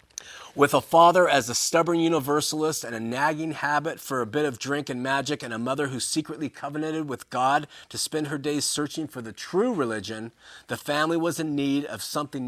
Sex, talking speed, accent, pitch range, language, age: male, 200 wpm, American, 115-155 Hz, English, 30-49